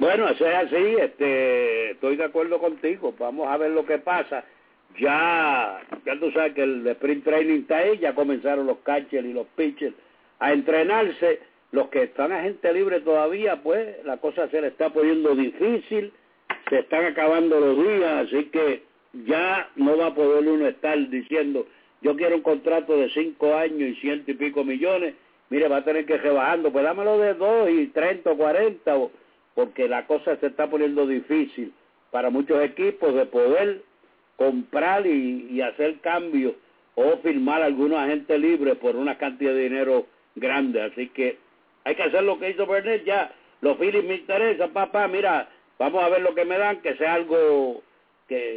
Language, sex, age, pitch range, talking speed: English, male, 60-79, 145-225 Hz, 180 wpm